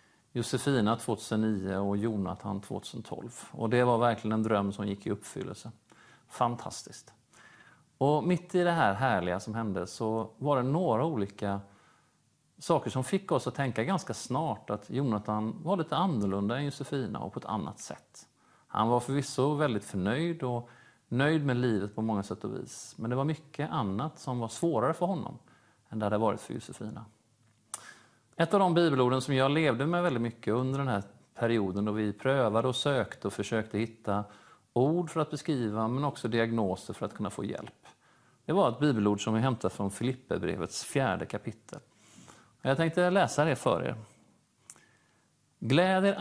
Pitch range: 110-145 Hz